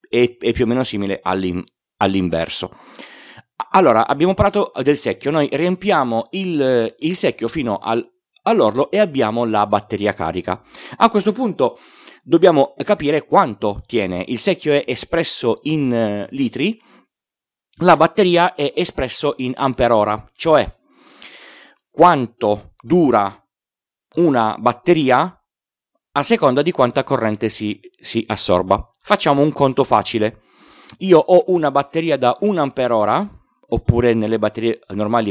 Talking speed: 120 wpm